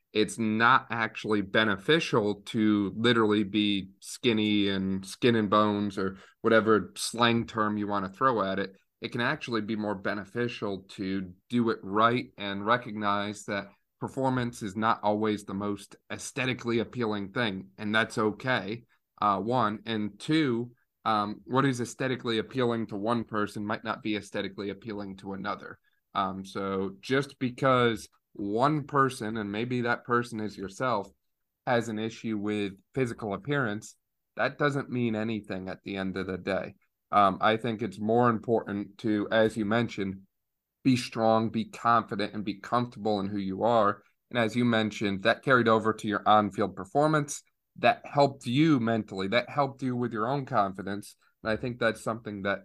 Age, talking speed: 30-49, 165 wpm